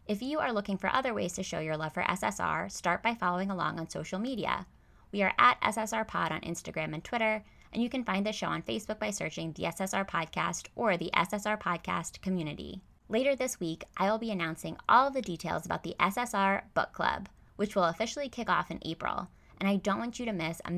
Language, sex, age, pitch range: English, female, 20-39, 165-220 Hz